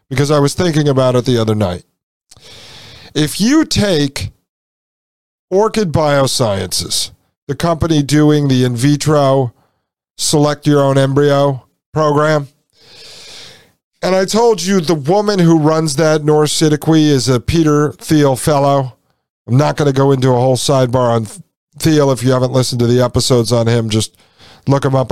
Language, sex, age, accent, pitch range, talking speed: English, male, 50-69, American, 115-155 Hz, 155 wpm